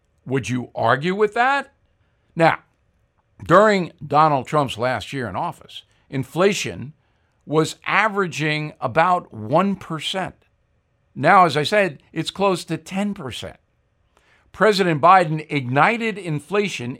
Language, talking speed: English, 105 wpm